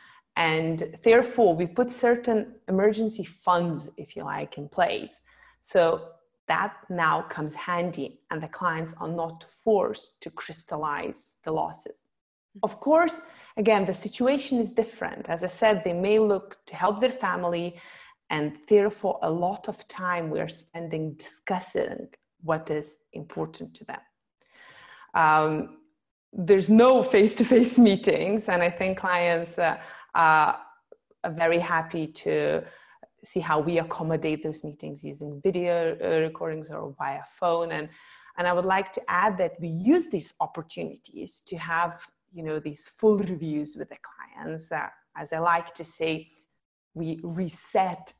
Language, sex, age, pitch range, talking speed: English, female, 30-49, 160-215 Hz, 145 wpm